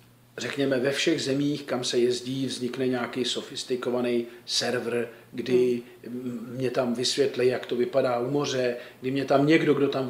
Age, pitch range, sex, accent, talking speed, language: 40-59, 120-180 Hz, male, native, 155 wpm, Czech